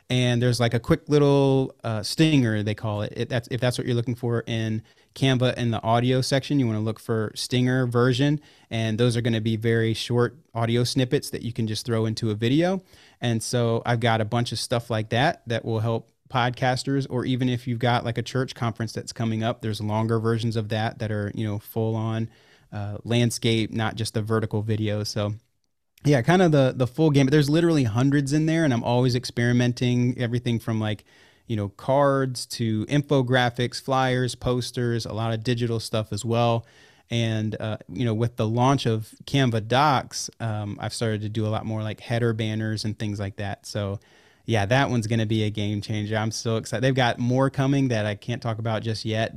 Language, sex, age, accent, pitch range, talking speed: English, male, 30-49, American, 110-125 Hz, 215 wpm